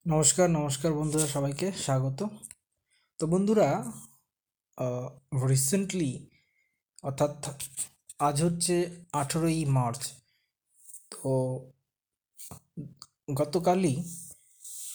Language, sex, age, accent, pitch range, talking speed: Bengali, male, 20-39, native, 135-170 Hz, 60 wpm